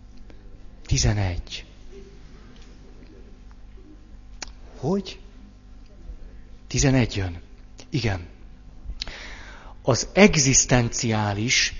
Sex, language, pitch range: male, Hungarian, 95-125 Hz